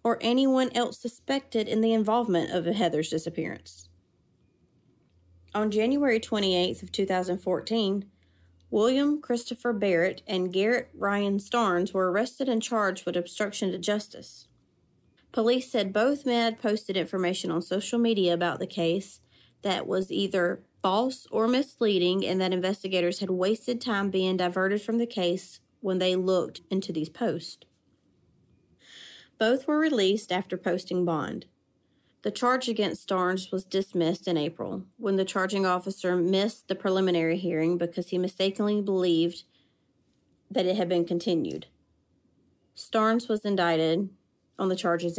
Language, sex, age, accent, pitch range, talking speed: English, female, 30-49, American, 175-225 Hz, 135 wpm